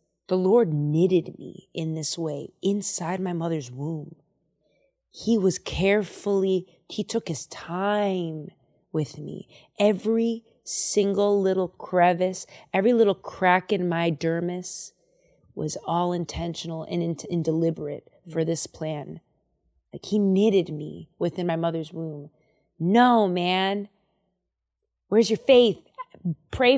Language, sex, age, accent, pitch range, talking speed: English, female, 20-39, American, 165-205 Hz, 120 wpm